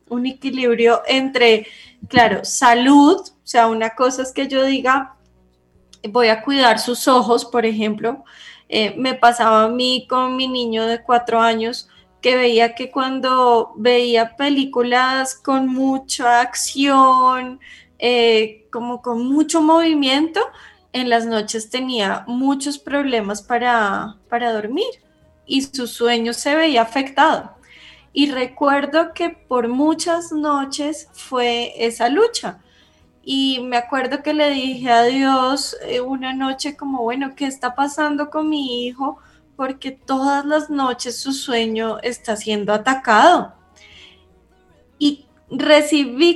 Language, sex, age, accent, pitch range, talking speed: English, female, 10-29, Colombian, 230-275 Hz, 125 wpm